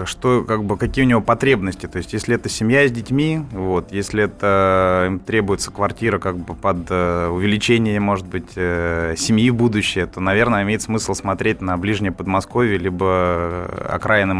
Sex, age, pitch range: male, 20-39, 90-110 Hz